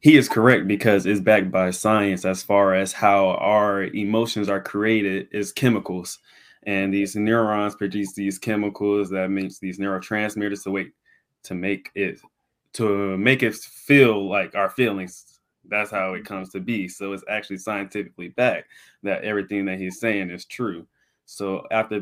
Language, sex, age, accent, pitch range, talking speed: English, male, 20-39, American, 95-105 Hz, 160 wpm